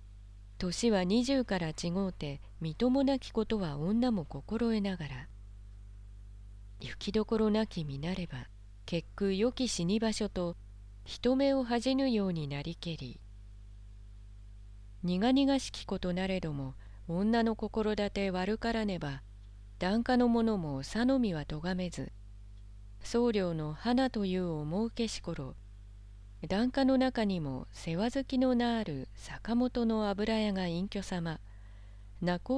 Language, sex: Japanese, female